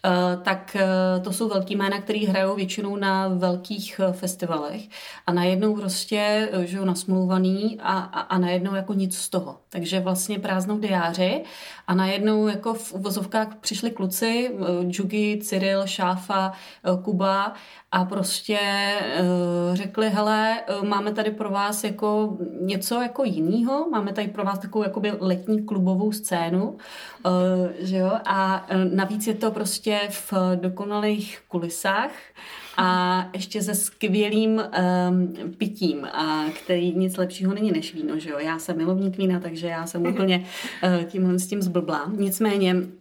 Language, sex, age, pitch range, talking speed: Czech, female, 30-49, 180-210 Hz, 155 wpm